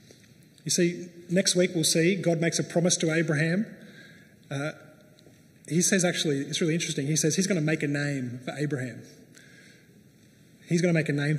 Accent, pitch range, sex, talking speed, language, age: Australian, 150-180 Hz, male, 185 wpm, English, 30-49